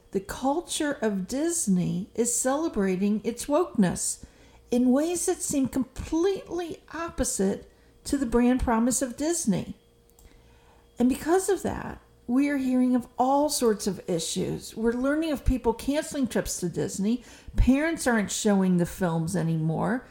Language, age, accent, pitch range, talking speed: English, 50-69, American, 210-280 Hz, 135 wpm